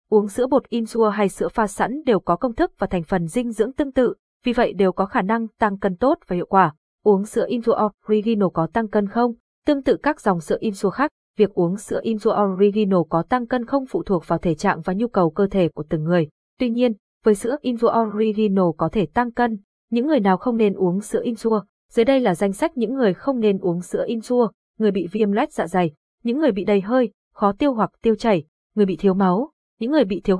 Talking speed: 240 wpm